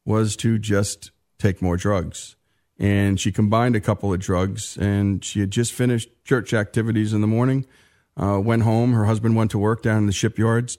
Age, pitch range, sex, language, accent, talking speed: 50-69, 100-115 Hz, male, English, American, 195 wpm